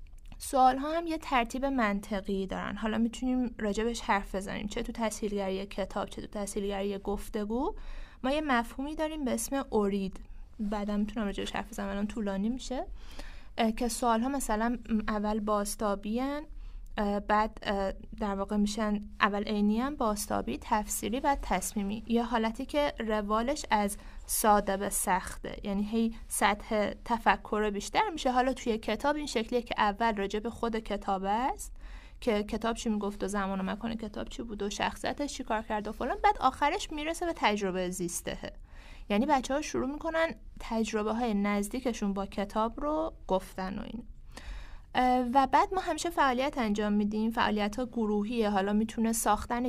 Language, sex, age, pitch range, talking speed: Persian, female, 20-39, 205-245 Hz, 150 wpm